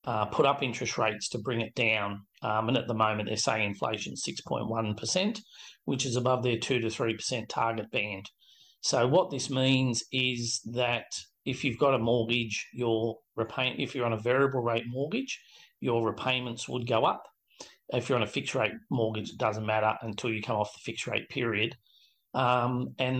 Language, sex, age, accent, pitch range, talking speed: English, male, 40-59, Australian, 115-130 Hz, 190 wpm